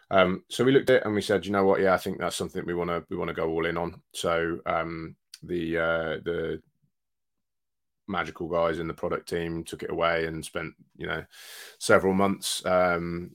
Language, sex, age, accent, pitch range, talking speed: English, male, 20-39, British, 85-90 Hz, 205 wpm